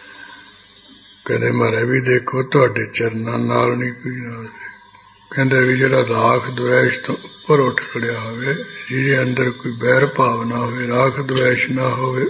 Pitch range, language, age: 115-135 Hz, English, 60-79